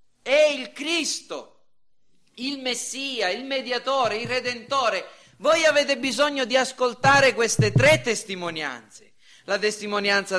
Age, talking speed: 40-59, 110 wpm